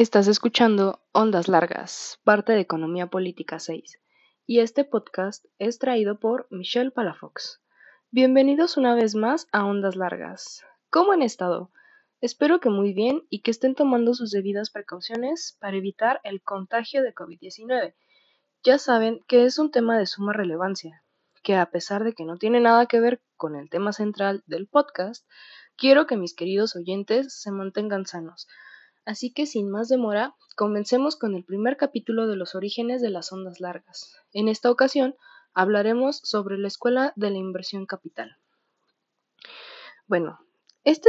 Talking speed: 155 wpm